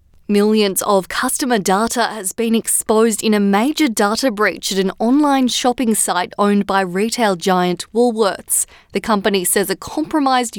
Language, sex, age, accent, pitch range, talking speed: English, female, 20-39, Australian, 195-235 Hz, 155 wpm